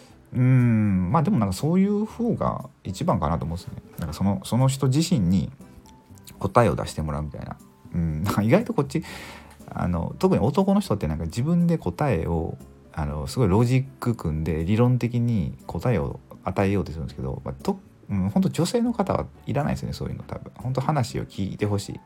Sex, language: male, Japanese